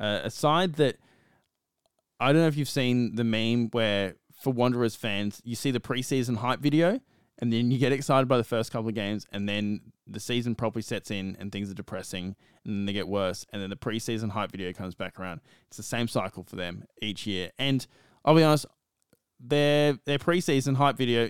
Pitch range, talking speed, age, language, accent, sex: 100-130 Hz, 210 wpm, 20-39, English, Australian, male